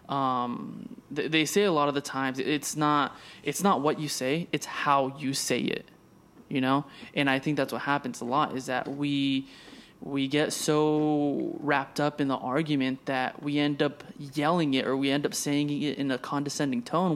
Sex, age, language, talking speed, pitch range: male, 20-39, English, 200 wpm, 135-160 Hz